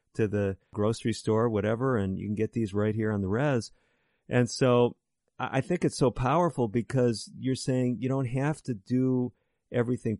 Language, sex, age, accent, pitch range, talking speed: English, male, 40-59, American, 105-125 Hz, 180 wpm